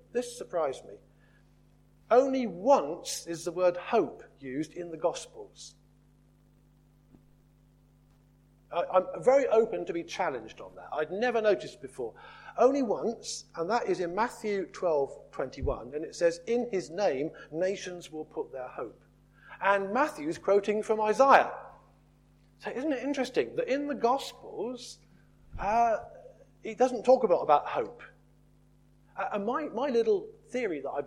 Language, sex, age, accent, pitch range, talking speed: English, male, 40-59, British, 185-265 Hz, 135 wpm